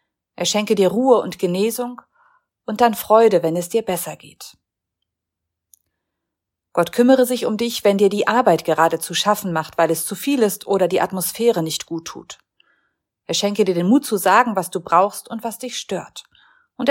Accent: German